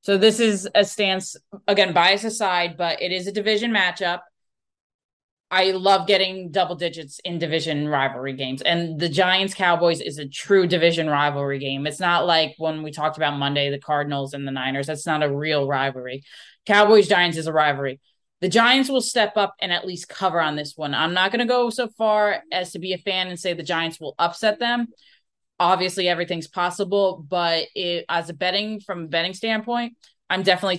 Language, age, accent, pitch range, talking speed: English, 20-39, American, 155-190 Hz, 195 wpm